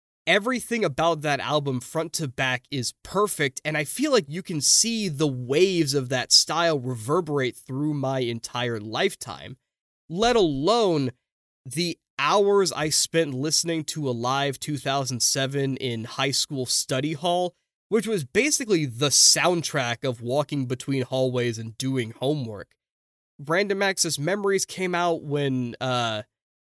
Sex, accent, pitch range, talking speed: male, American, 130-165 Hz, 135 wpm